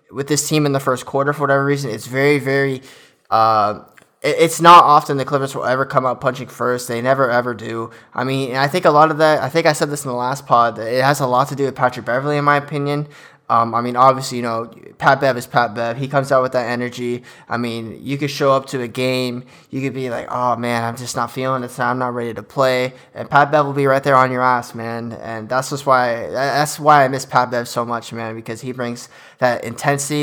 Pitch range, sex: 120-145 Hz, male